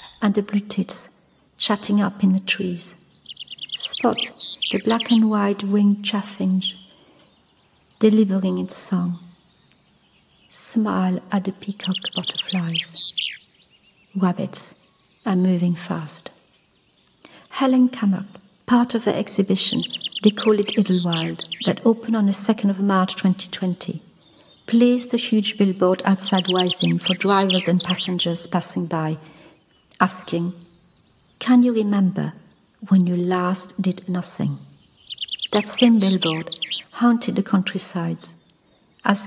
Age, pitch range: 50-69, 175-205 Hz